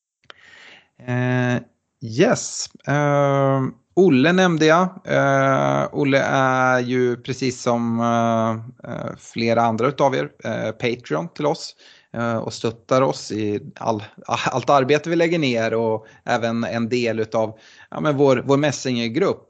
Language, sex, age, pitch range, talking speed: Swedish, male, 30-49, 110-140 Hz, 135 wpm